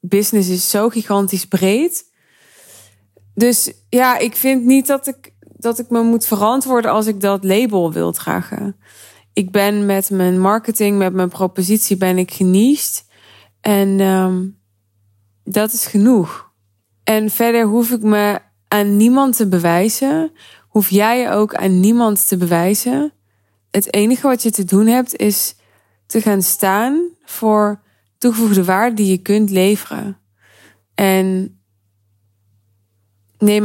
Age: 20-39